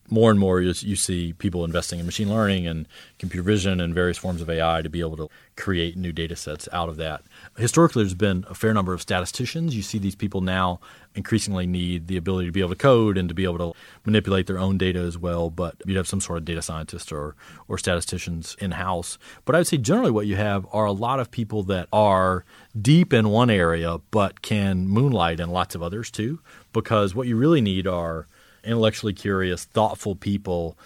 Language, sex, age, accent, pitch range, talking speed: English, male, 30-49, American, 90-115 Hz, 215 wpm